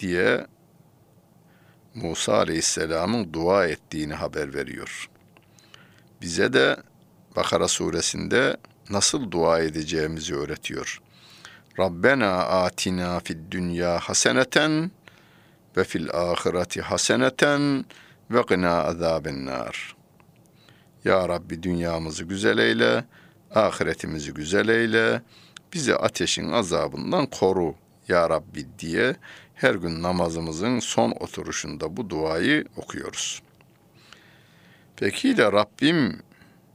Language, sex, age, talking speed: Turkish, male, 60-79, 85 wpm